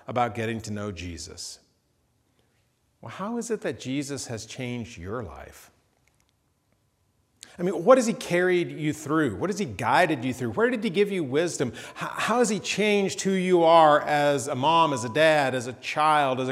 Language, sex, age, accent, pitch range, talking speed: English, male, 40-59, American, 120-165 Hz, 190 wpm